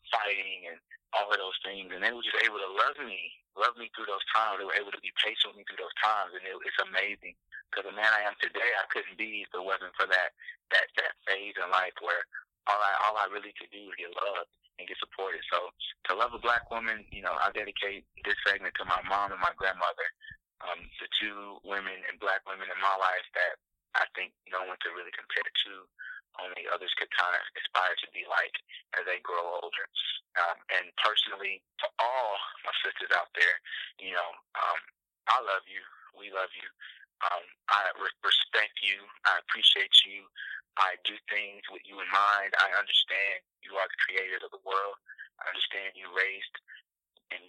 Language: English